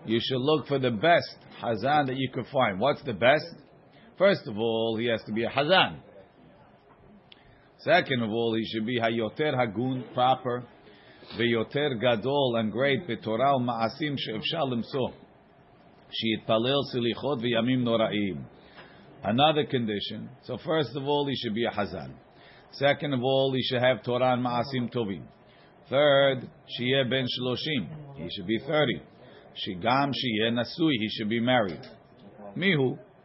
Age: 50-69